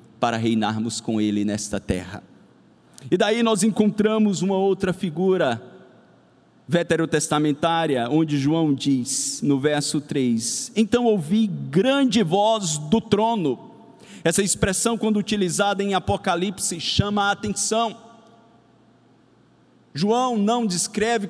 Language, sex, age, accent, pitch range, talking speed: Portuguese, male, 50-69, Brazilian, 155-215 Hz, 105 wpm